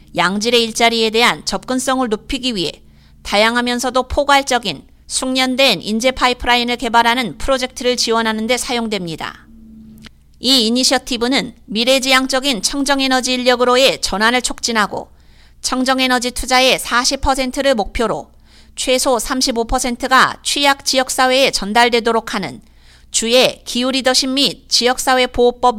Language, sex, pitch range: Korean, female, 225-265 Hz